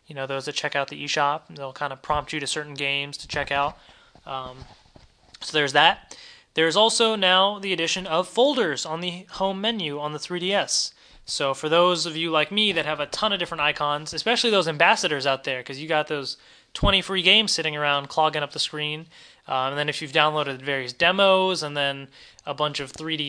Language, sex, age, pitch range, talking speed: English, male, 20-39, 145-185 Hz, 215 wpm